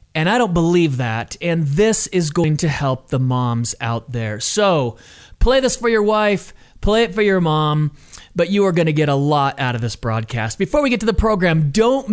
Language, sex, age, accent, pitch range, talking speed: English, male, 30-49, American, 140-195 Hz, 225 wpm